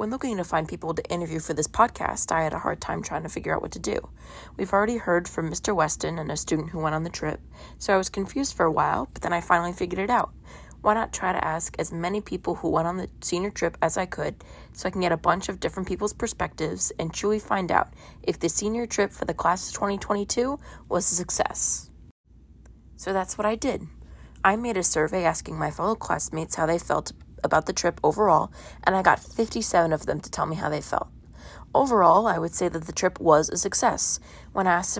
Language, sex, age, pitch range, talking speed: English, female, 20-39, 165-205 Hz, 235 wpm